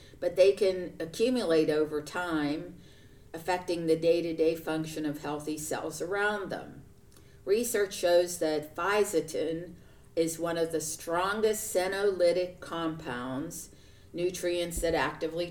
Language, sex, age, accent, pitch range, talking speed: English, female, 50-69, American, 155-185 Hz, 110 wpm